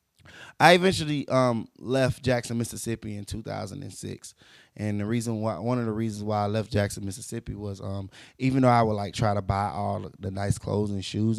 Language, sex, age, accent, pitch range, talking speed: English, male, 20-39, American, 100-115 Hz, 195 wpm